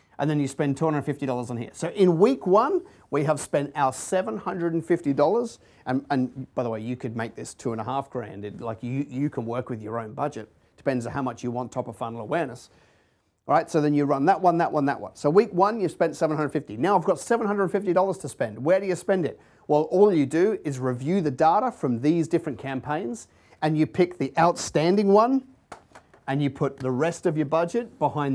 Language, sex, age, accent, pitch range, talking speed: English, male, 40-59, Australian, 130-170 Hz, 225 wpm